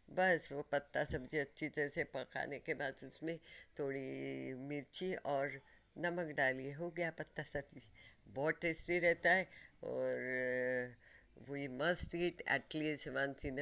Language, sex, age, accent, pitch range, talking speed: Hindi, female, 50-69, native, 135-175 Hz, 130 wpm